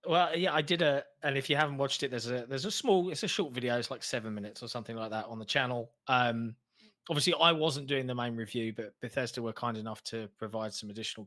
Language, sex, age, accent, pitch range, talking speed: English, male, 20-39, British, 115-150 Hz, 255 wpm